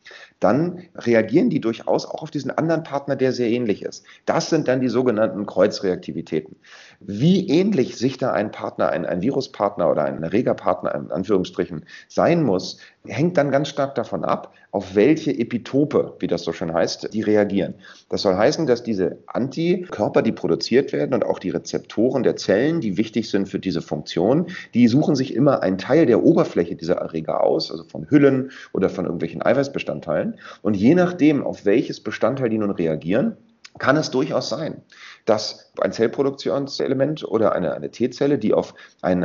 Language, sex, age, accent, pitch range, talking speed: German, male, 40-59, German, 100-145 Hz, 175 wpm